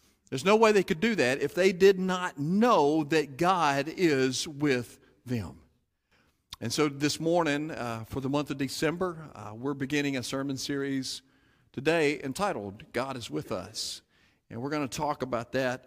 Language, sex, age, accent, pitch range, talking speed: English, male, 50-69, American, 115-145 Hz, 175 wpm